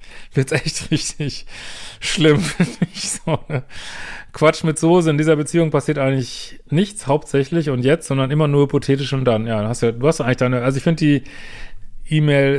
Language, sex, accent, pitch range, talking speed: German, male, German, 120-150 Hz, 185 wpm